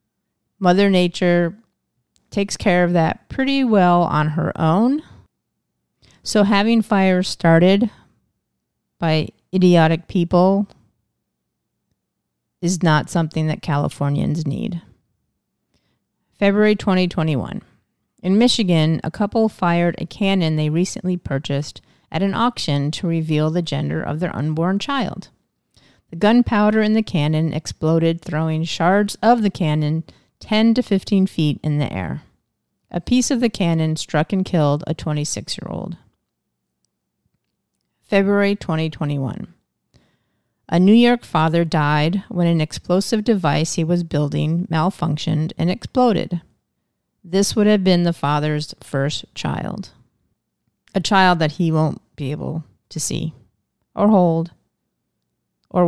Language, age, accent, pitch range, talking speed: English, 30-49, American, 155-200 Hz, 120 wpm